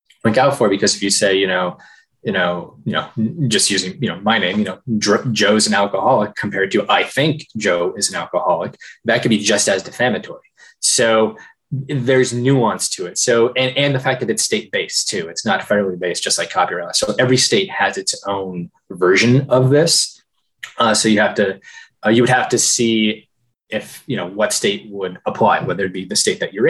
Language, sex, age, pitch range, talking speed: English, male, 20-39, 105-130 Hz, 210 wpm